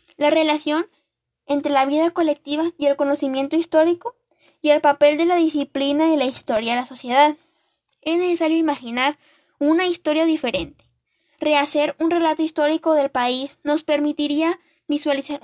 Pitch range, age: 280-320 Hz, 10-29